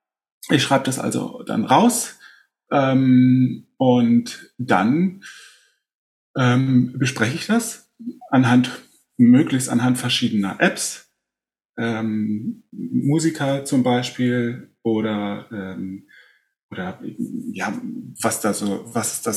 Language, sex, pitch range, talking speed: German, male, 115-150 Hz, 95 wpm